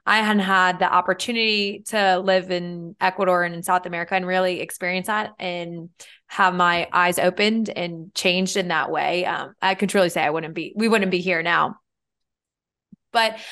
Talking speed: 180 wpm